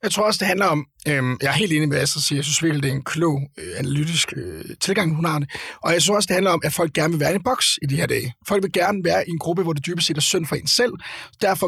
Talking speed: 310 wpm